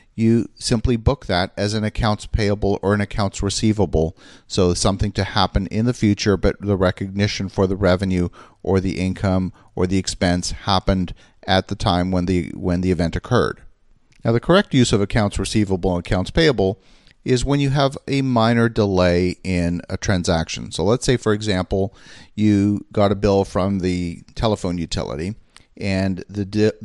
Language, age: English, 40-59